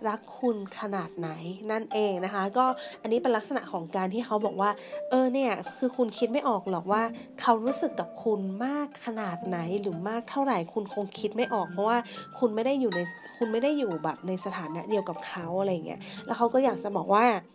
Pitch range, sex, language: 195-260 Hz, female, Thai